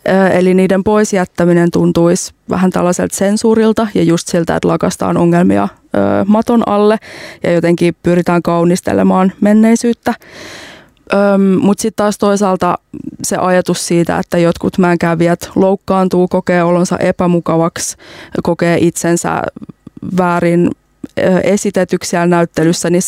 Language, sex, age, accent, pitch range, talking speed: Finnish, female, 20-39, native, 170-205 Hz, 105 wpm